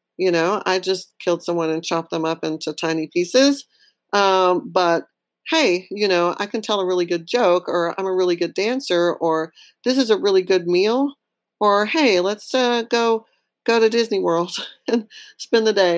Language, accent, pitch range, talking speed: English, American, 170-220 Hz, 190 wpm